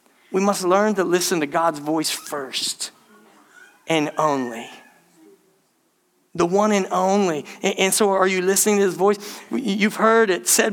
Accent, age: American, 40-59